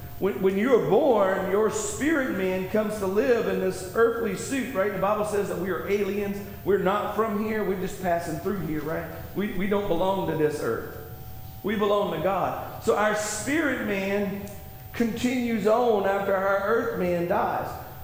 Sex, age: male, 40-59